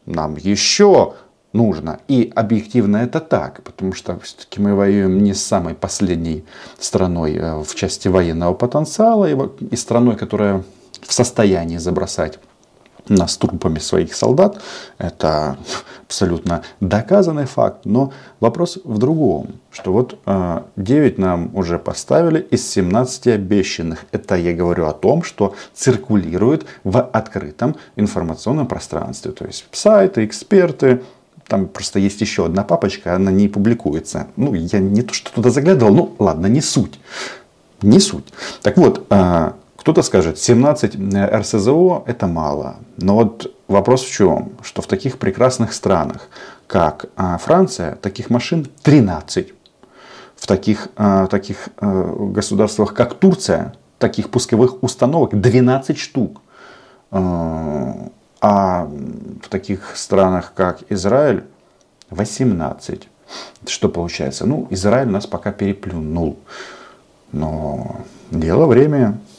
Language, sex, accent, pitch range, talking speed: Russian, male, native, 90-125 Hz, 120 wpm